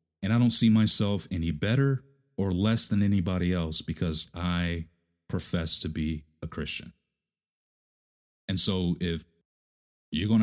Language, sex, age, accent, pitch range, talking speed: English, male, 30-49, American, 85-110 Hz, 140 wpm